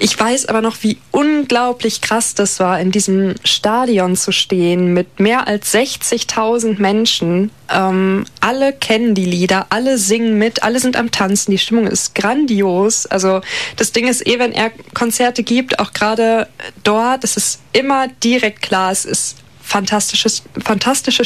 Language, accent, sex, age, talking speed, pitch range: German, German, female, 20-39, 160 wpm, 190-235 Hz